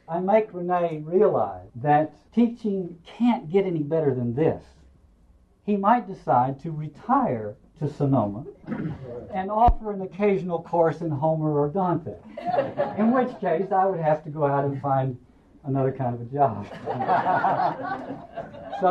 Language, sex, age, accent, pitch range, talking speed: English, male, 60-79, American, 125-190 Hz, 145 wpm